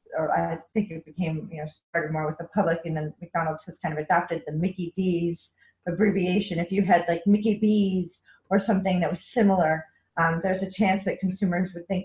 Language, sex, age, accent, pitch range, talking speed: English, female, 30-49, American, 155-180 Hz, 210 wpm